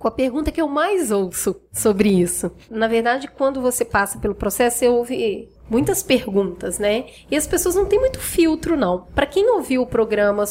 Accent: Brazilian